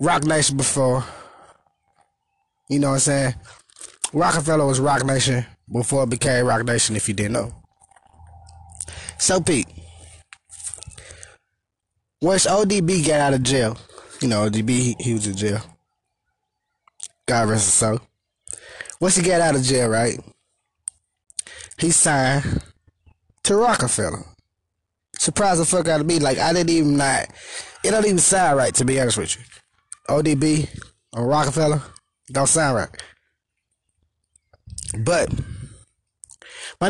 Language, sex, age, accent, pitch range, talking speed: English, male, 20-39, American, 100-150 Hz, 130 wpm